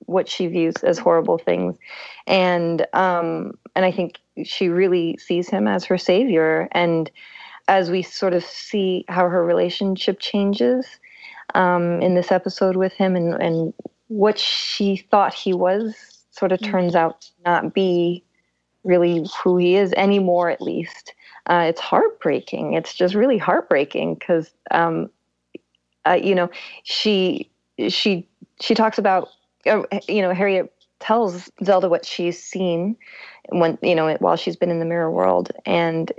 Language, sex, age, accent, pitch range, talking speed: English, female, 30-49, American, 170-195 Hz, 150 wpm